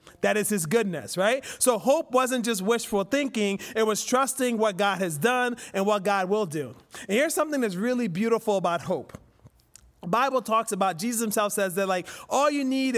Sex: male